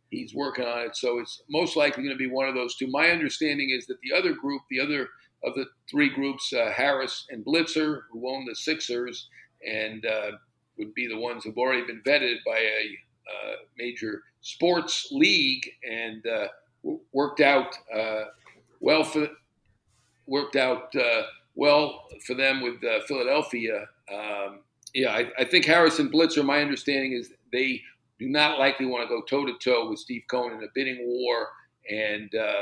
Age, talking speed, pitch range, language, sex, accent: 50-69, 180 wpm, 120-160 Hz, English, male, American